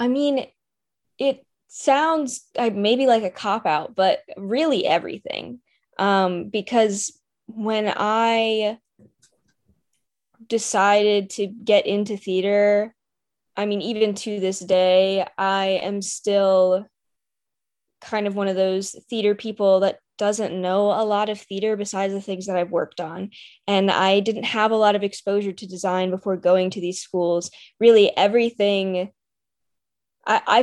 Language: English